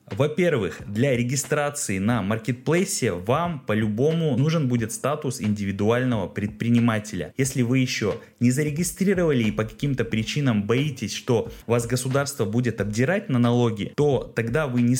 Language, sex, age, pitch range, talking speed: Russian, male, 20-39, 105-130 Hz, 130 wpm